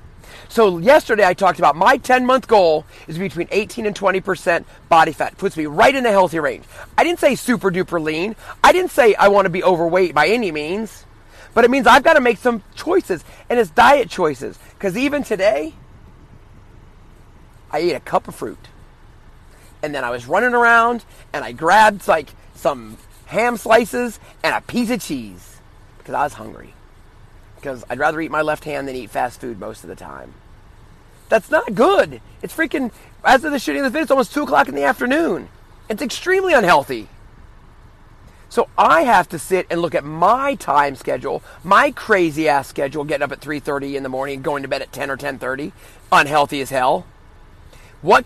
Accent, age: American, 30-49